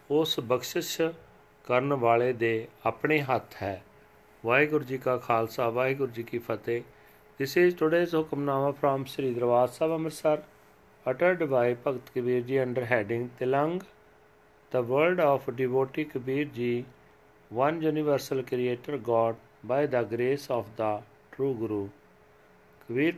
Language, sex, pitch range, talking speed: Punjabi, male, 120-150 Hz, 130 wpm